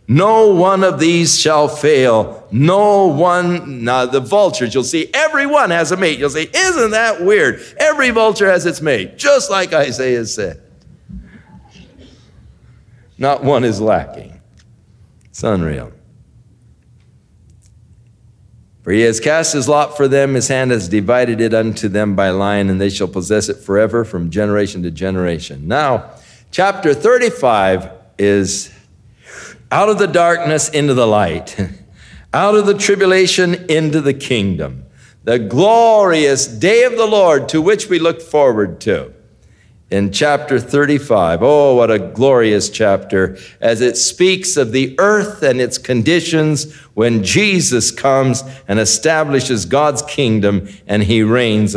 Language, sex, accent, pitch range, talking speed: English, male, American, 110-165 Hz, 140 wpm